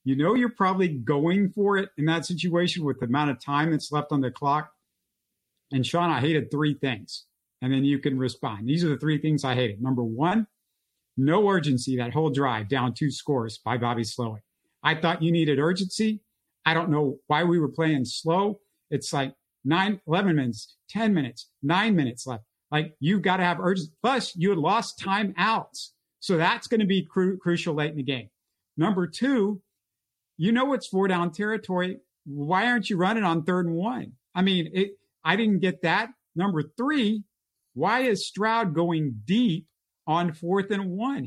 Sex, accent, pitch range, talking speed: male, American, 140-200 Hz, 185 wpm